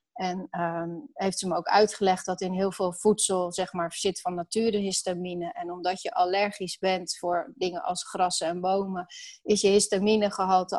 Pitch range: 185-215 Hz